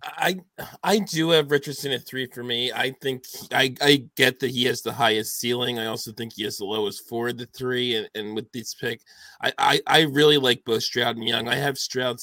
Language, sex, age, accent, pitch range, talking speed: English, male, 20-39, American, 115-135 Hz, 235 wpm